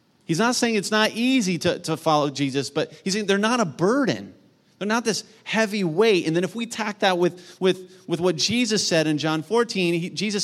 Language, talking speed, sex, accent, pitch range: English, 225 wpm, male, American, 165-215 Hz